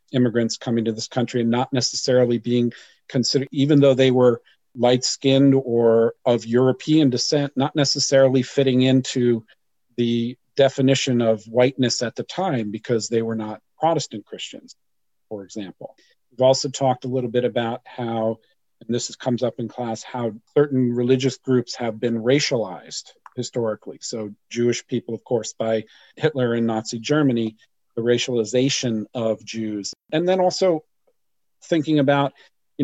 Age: 40-59